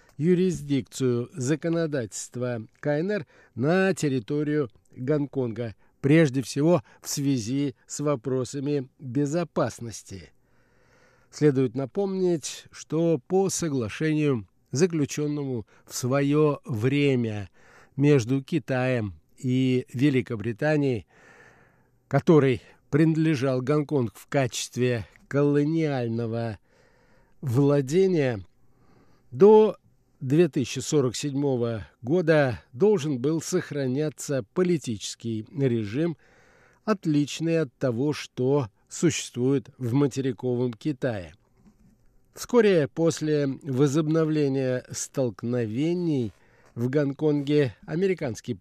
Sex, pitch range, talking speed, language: male, 125-155 Hz, 70 wpm, Russian